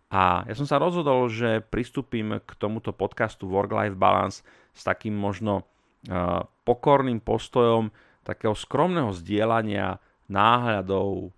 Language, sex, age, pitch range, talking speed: Slovak, male, 40-59, 95-115 Hz, 110 wpm